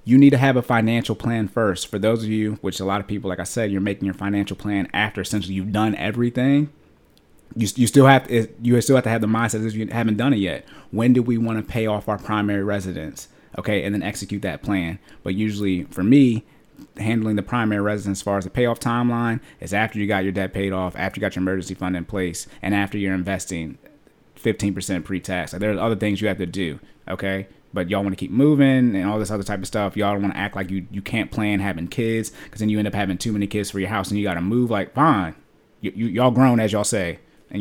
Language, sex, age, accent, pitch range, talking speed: English, male, 30-49, American, 95-115 Hz, 255 wpm